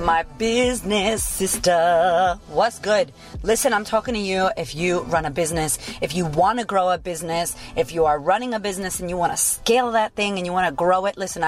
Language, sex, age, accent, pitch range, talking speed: English, female, 30-49, American, 165-200 Hz, 220 wpm